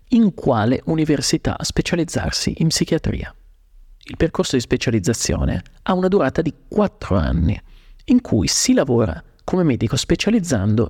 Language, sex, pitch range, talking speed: Italian, male, 105-165 Hz, 125 wpm